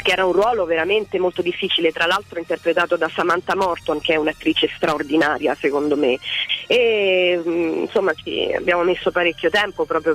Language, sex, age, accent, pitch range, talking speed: Italian, female, 30-49, native, 155-195 Hz, 155 wpm